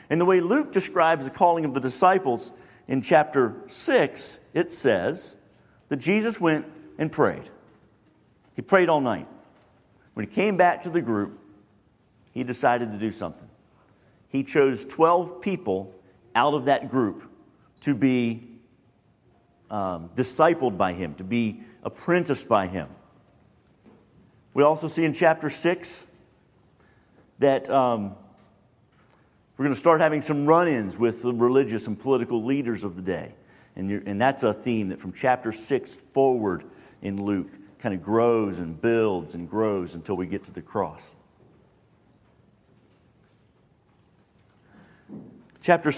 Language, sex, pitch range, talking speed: English, male, 105-155 Hz, 135 wpm